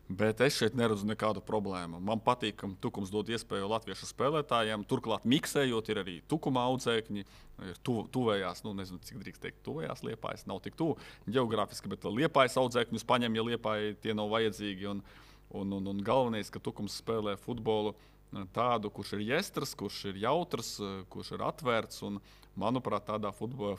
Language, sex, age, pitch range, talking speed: English, male, 20-39, 100-120 Hz, 160 wpm